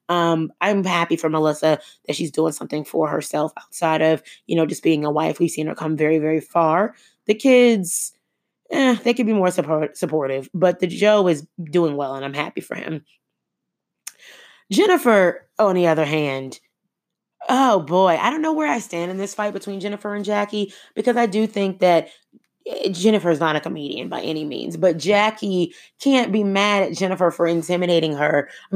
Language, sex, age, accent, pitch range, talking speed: English, female, 20-39, American, 165-220 Hz, 185 wpm